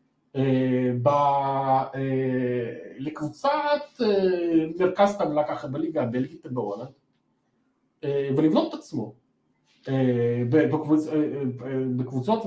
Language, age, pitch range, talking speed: Hebrew, 50-69, 130-195 Hz, 65 wpm